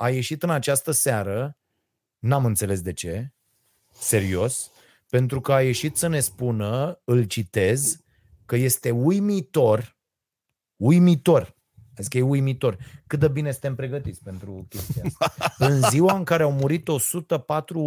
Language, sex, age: Romanian, male, 30-49